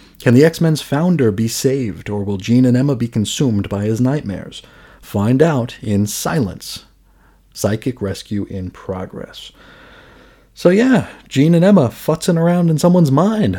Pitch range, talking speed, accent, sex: 105-155 Hz, 150 wpm, American, male